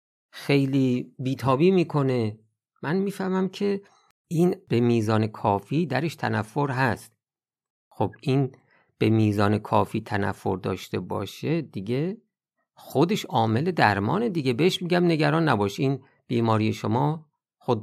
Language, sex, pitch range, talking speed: Persian, male, 100-140 Hz, 115 wpm